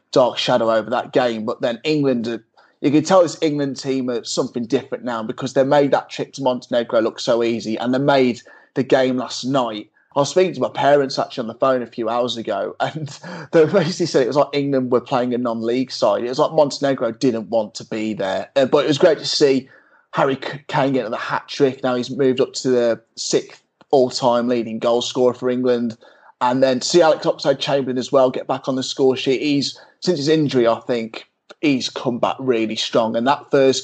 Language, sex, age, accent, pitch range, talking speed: English, male, 20-39, British, 120-140 Hz, 220 wpm